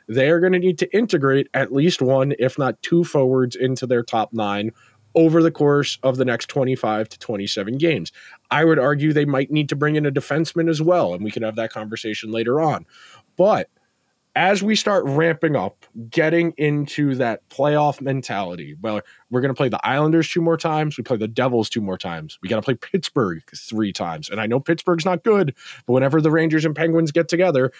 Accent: American